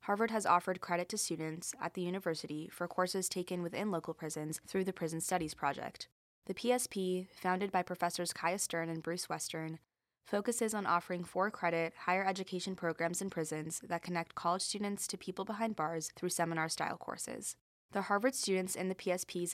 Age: 20-39